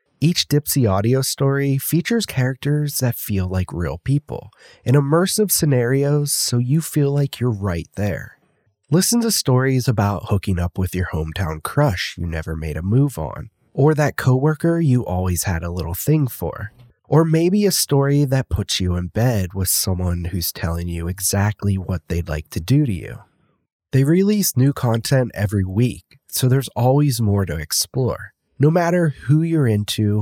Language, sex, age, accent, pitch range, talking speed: English, male, 30-49, American, 95-145 Hz, 170 wpm